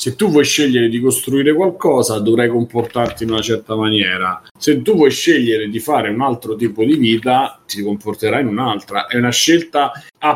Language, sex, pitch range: Italian, male, 105-145 Hz